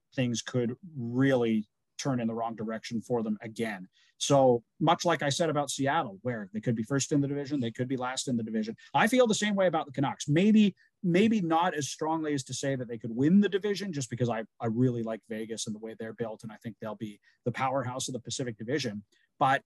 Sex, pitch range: male, 120-155 Hz